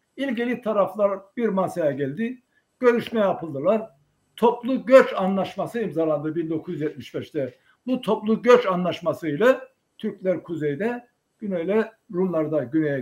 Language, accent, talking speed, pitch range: Turkish, native, 95 wpm, 175-225 Hz